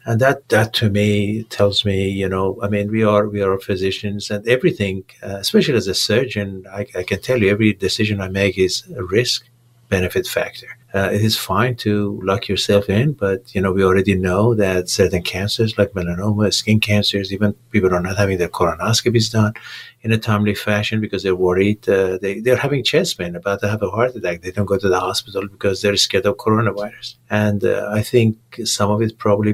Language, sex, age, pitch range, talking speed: English, male, 50-69, 95-110 Hz, 215 wpm